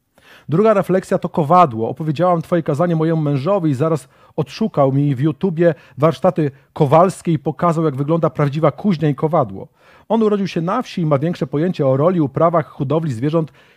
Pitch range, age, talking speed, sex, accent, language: 140-175 Hz, 40-59, 170 wpm, male, native, Polish